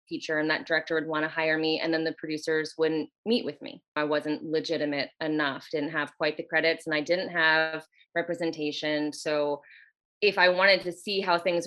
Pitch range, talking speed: 150-170 Hz, 195 wpm